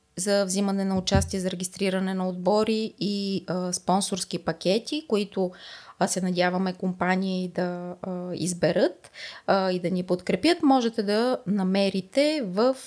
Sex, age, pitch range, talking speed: female, 20-39, 185-235 Hz, 130 wpm